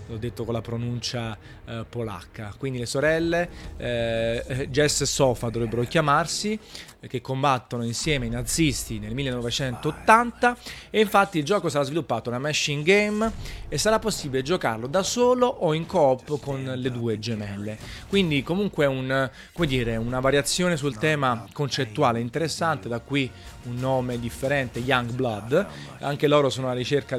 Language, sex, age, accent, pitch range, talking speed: Italian, male, 30-49, native, 120-160 Hz, 150 wpm